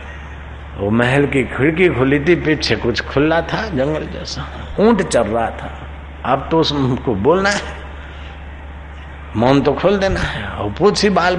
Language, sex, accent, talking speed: Hindi, male, native, 155 wpm